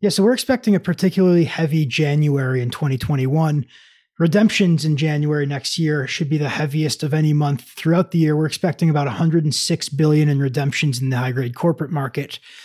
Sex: male